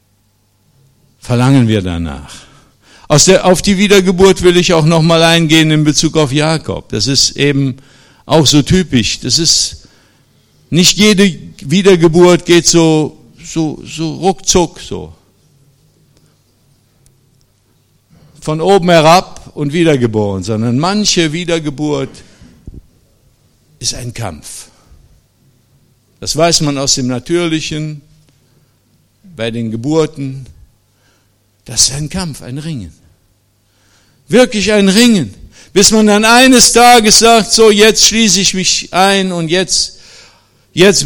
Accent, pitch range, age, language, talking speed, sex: German, 125-200 Hz, 60-79, German, 115 wpm, male